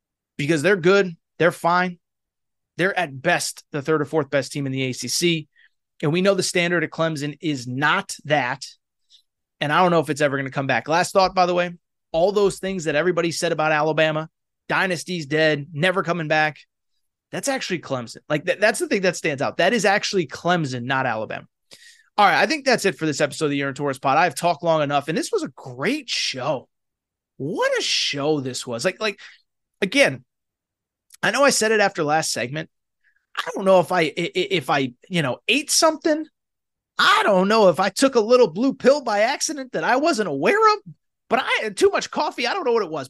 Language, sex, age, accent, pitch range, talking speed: English, male, 30-49, American, 150-200 Hz, 215 wpm